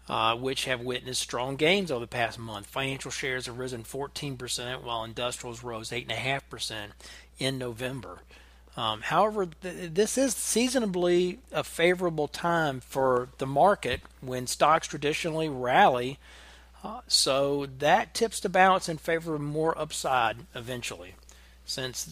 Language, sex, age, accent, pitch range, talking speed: English, male, 40-59, American, 125-150 Hz, 135 wpm